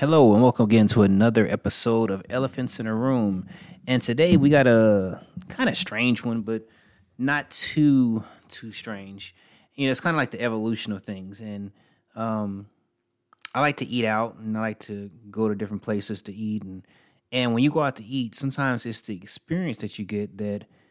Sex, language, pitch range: male, English, 105-120 Hz